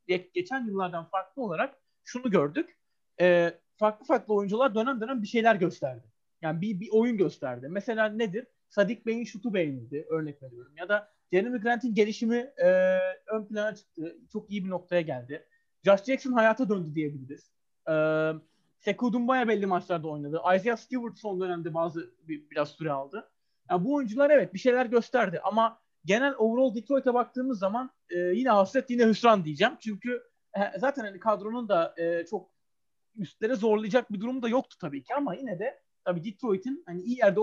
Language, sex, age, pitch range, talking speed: Turkish, male, 40-59, 175-245 Hz, 170 wpm